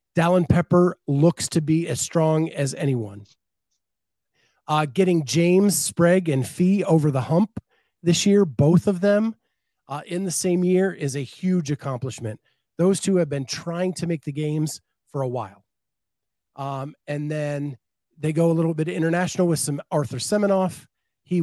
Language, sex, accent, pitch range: English, male, American, 135-170 Hz